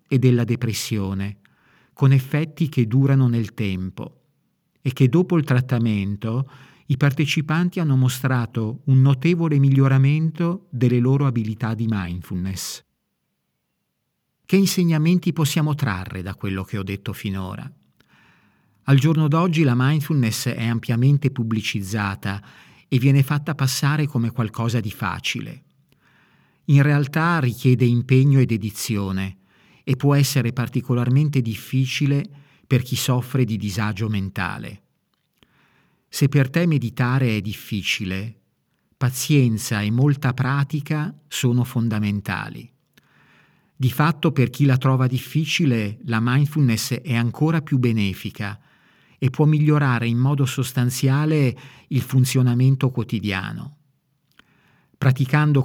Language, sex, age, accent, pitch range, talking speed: Italian, male, 50-69, native, 115-145 Hz, 110 wpm